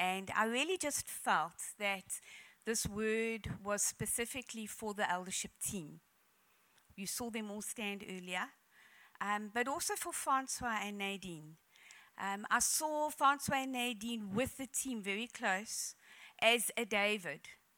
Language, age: English, 50-69